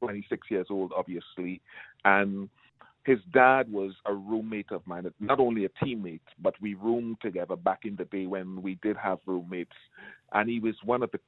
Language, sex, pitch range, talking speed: English, male, 95-110 Hz, 185 wpm